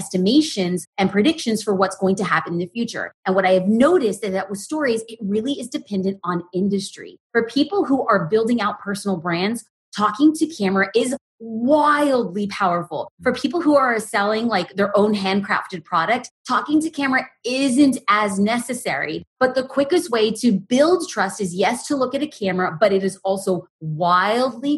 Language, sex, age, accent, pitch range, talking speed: English, female, 30-49, American, 190-250 Hz, 180 wpm